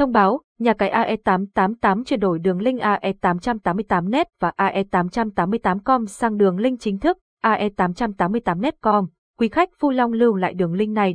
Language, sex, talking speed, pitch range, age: Vietnamese, female, 155 wpm, 190-240 Hz, 20-39